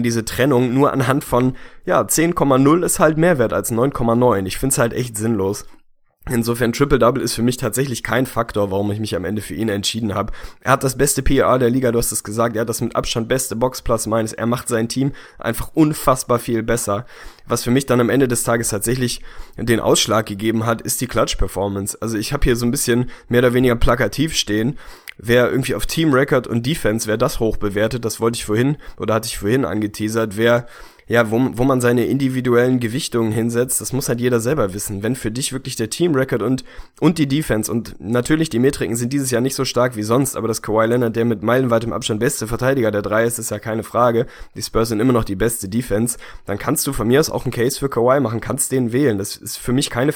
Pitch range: 110-130 Hz